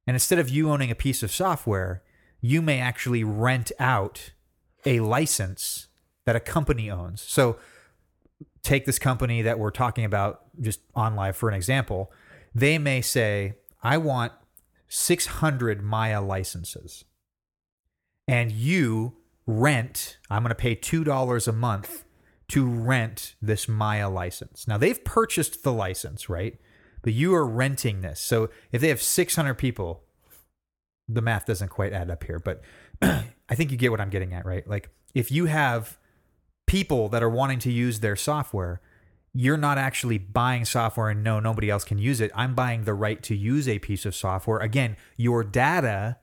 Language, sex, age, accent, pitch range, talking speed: English, male, 30-49, American, 100-130 Hz, 165 wpm